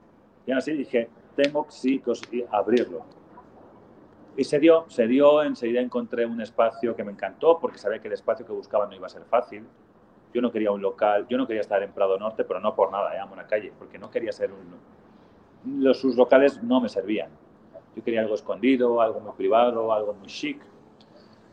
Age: 30-49